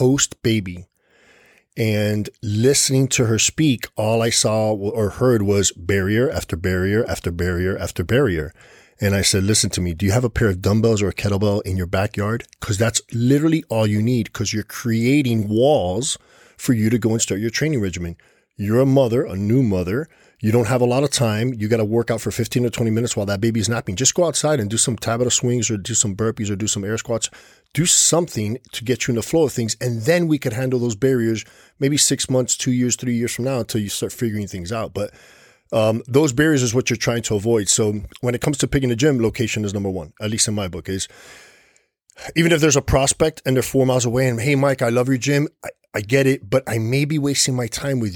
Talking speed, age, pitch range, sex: 235 wpm, 40-59, 105-130 Hz, male